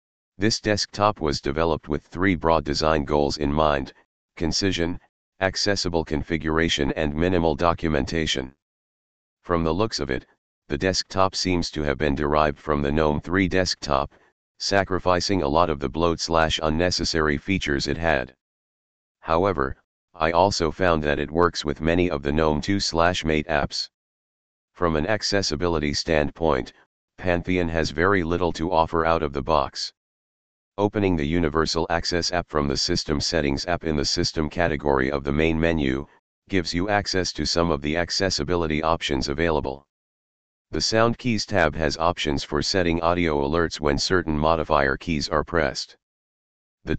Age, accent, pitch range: 40-59, American, 75-90 Hz